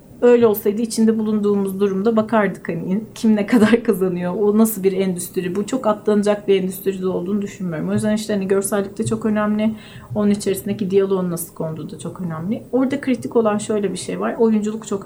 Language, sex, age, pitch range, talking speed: Turkish, female, 40-59, 195-235 Hz, 185 wpm